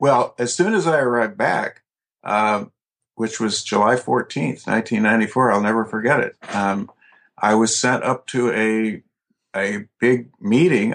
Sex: male